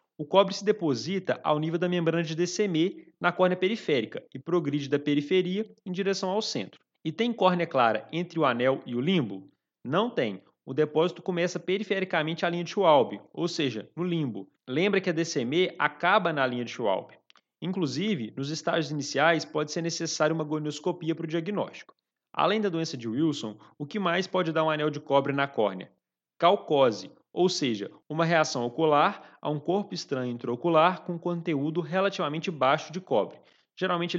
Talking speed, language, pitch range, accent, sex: 175 wpm, Portuguese, 145-185 Hz, Brazilian, male